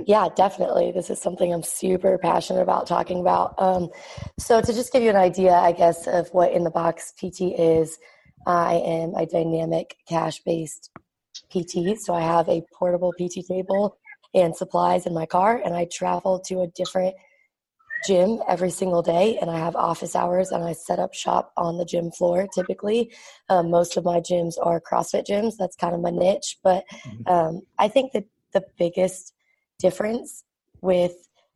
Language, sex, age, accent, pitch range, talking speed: English, female, 20-39, American, 175-190 Hz, 180 wpm